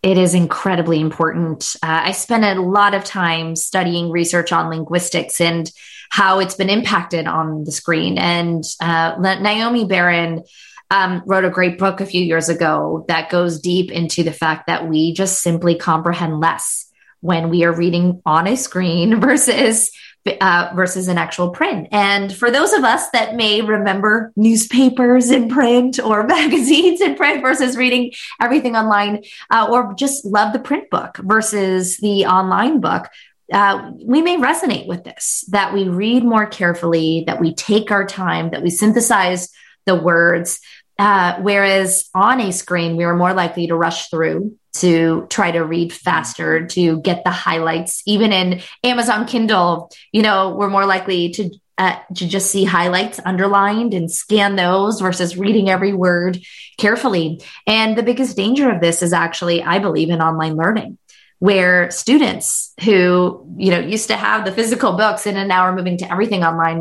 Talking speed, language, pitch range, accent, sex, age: 170 wpm, English, 170-215 Hz, American, female, 20-39